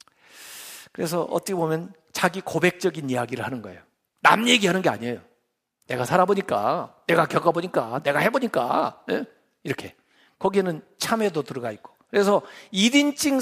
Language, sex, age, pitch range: Korean, male, 50-69, 170-265 Hz